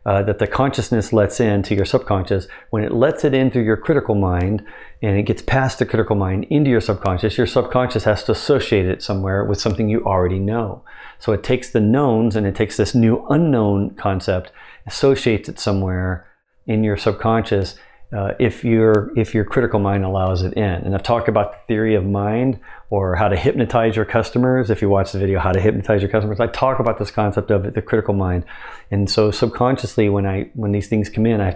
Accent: American